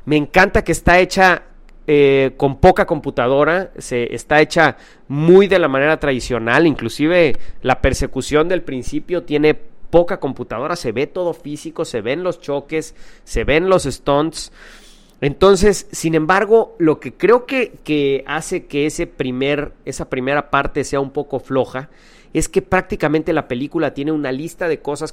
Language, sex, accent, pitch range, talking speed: English, male, Mexican, 140-175 Hz, 160 wpm